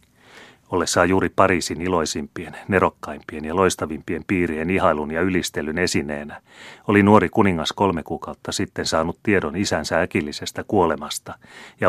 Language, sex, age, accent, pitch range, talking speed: Finnish, male, 30-49, native, 80-95 Hz, 125 wpm